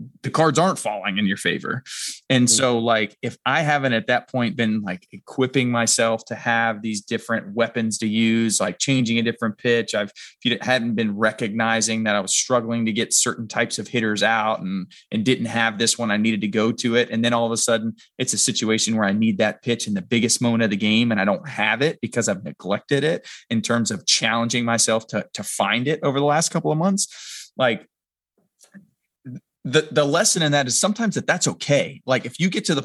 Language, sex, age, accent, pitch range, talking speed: English, male, 20-39, American, 115-145 Hz, 225 wpm